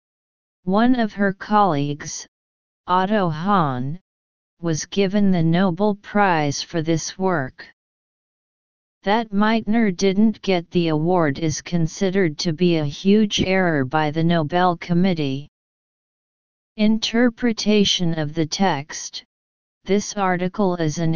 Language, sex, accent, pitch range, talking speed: English, female, American, 160-200 Hz, 110 wpm